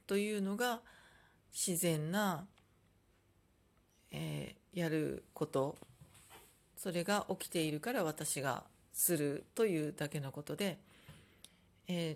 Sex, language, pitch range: female, Japanese, 150-210 Hz